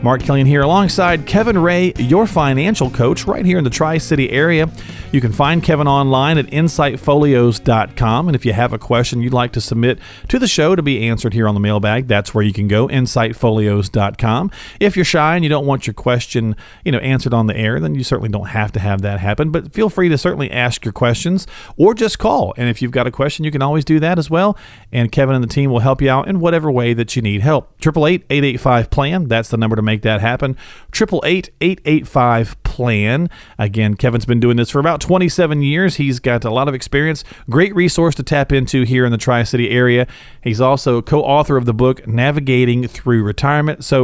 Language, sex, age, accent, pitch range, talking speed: English, male, 40-59, American, 120-160 Hz, 215 wpm